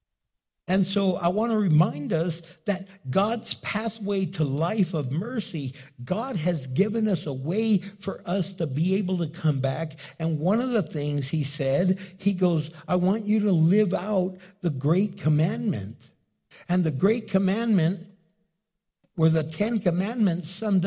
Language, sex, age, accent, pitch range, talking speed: English, male, 60-79, American, 145-195 Hz, 160 wpm